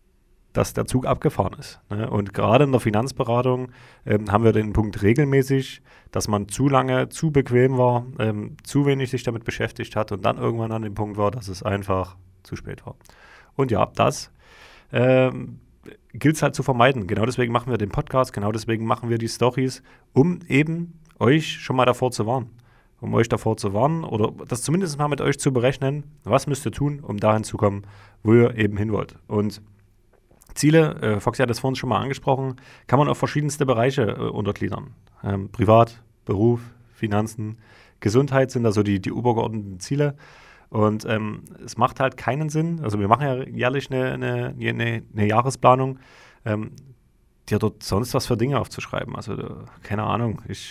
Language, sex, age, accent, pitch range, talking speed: German, male, 30-49, German, 105-130 Hz, 180 wpm